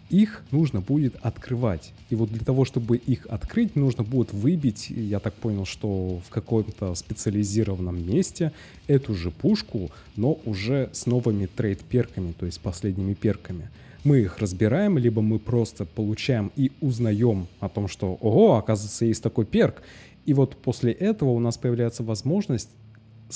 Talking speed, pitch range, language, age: 150 wpm, 100-125 Hz, Russian, 20-39